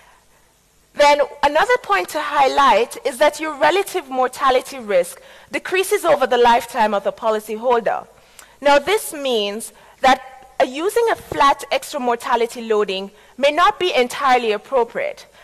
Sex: female